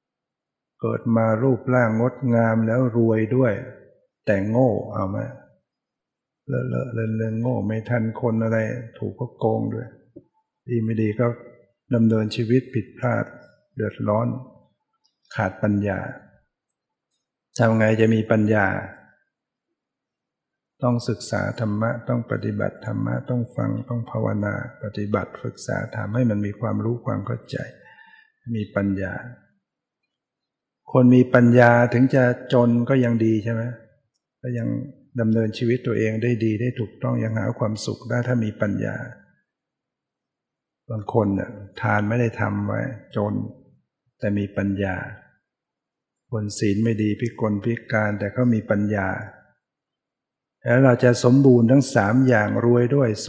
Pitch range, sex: 110-125 Hz, male